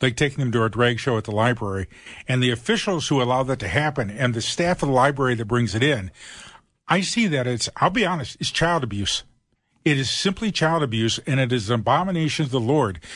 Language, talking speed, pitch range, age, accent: English, 235 wpm, 120-165 Hz, 50-69, American